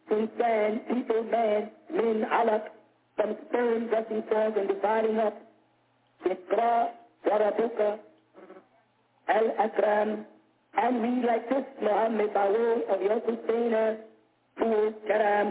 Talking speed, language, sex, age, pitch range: 110 wpm, English, female, 50-69, 215-265 Hz